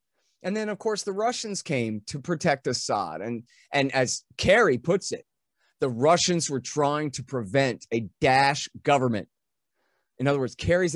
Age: 30-49